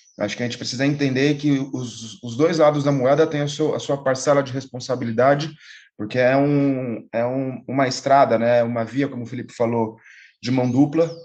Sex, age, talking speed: male, 20-39, 205 wpm